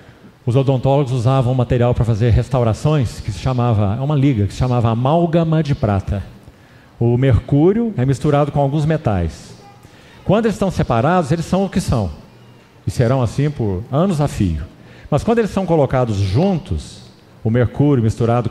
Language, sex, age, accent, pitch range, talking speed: Portuguese, male, 50-69, Brazilian, 115-160 Hz, 170 wpm